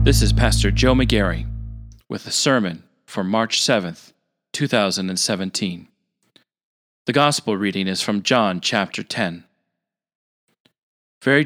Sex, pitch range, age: male, 105-140 Hz, 40-59